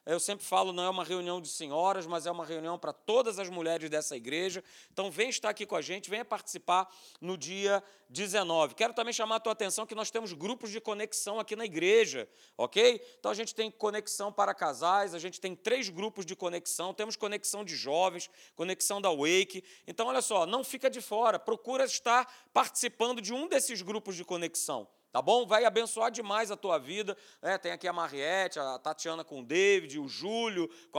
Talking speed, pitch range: 205 wpm, 185-225 Hz